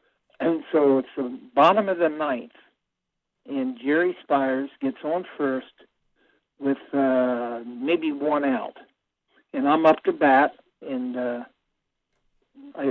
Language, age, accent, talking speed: English, 60-79, American, 120 wpm